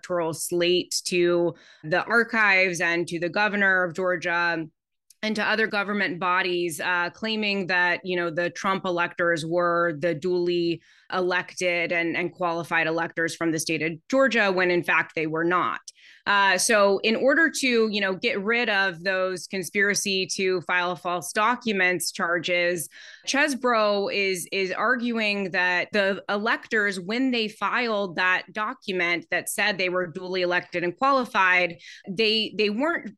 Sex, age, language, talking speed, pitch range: female, 20-39, English, 150 wpm, 175-210 Hz